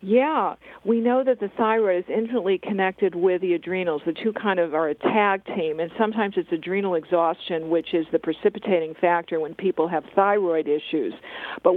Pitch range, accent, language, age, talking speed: 175-225 Hz, American, English, 50-69, 185 wpm